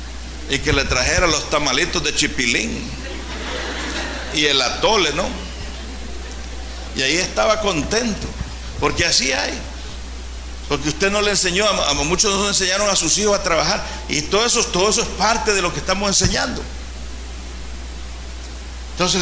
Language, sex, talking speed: Spanish, male, 145 wpm